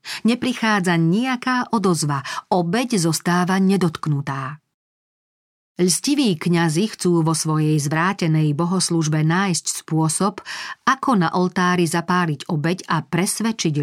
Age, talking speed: 40-59, 95 wpm